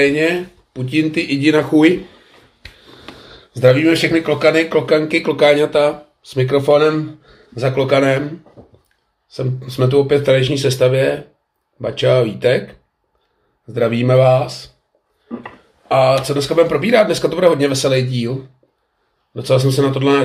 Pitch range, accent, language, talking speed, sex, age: 130-150 Hz, native, Czech, 120 wpm, male, 30-49